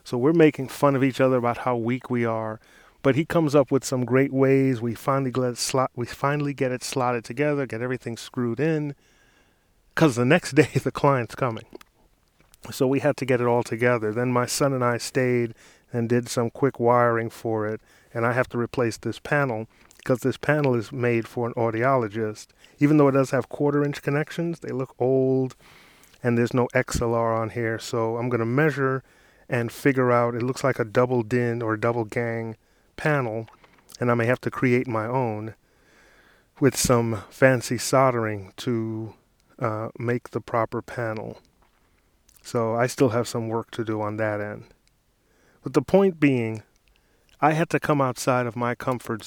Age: 30-49